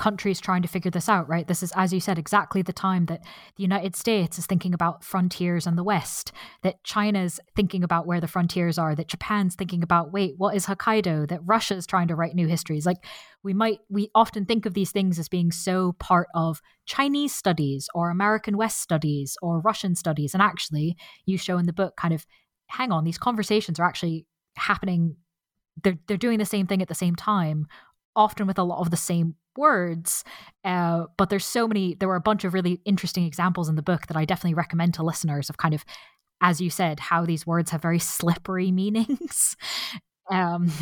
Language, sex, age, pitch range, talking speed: English, female, 20-39, 170-205 Hz, 210 wpm